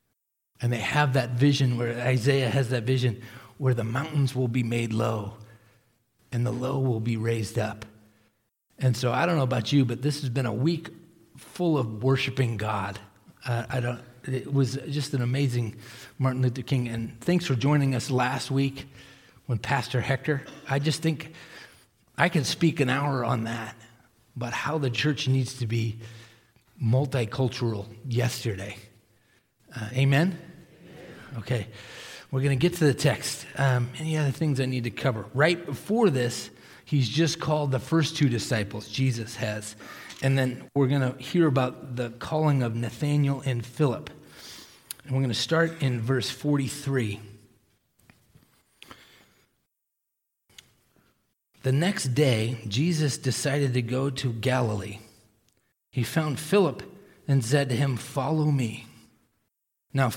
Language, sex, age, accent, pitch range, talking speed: English, male, 40-59, American, 115-140 Hz, 150 wpm